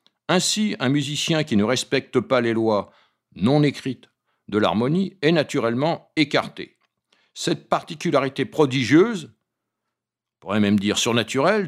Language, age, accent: French, 60-79, French